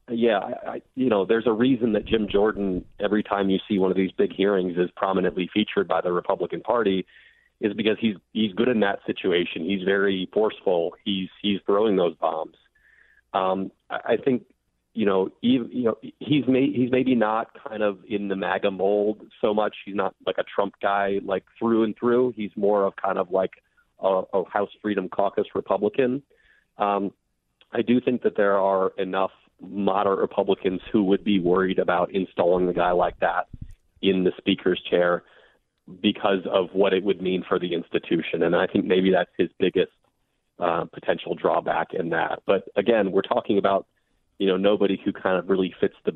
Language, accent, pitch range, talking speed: English, American, 95-105 Hz, 185 wpm